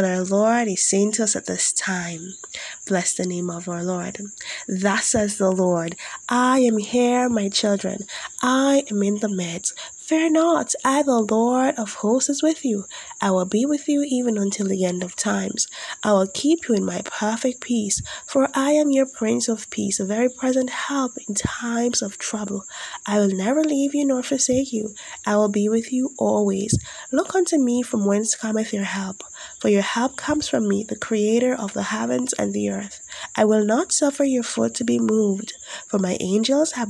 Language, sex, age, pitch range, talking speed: English, female, 20-39, 200-260 Hz, 200 wpm